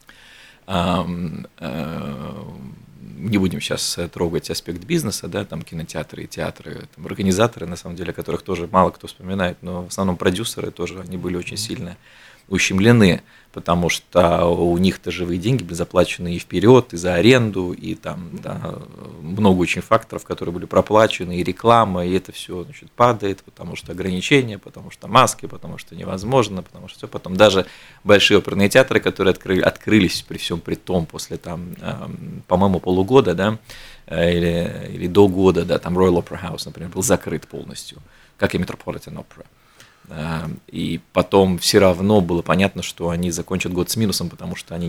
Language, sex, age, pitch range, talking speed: Russian, male, 20-39, 90-110 Hz, 165 wpm